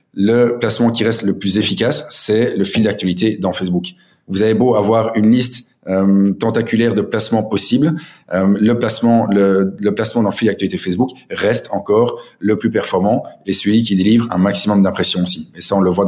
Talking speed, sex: 190 wpm, male